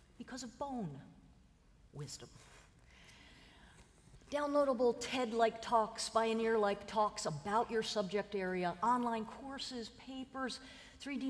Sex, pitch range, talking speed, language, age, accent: female, 175-255 Hz, 90 wpm, English, 50-69, American